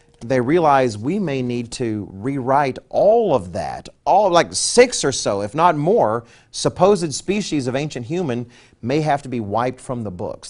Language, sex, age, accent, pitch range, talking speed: English, male, 40-59, American, 110-150 Hz, 175 wpm